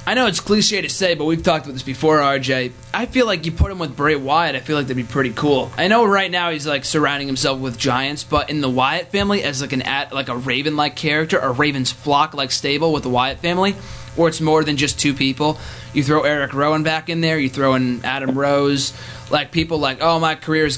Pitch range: 140-180 Hz